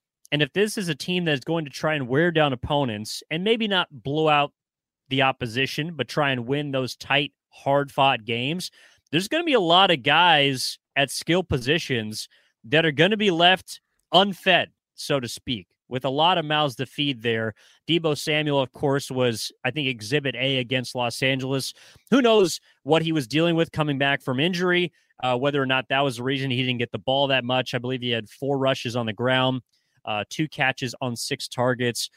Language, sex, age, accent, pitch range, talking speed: English, male, 30-49, American, 125-150 Hz, 210 wpm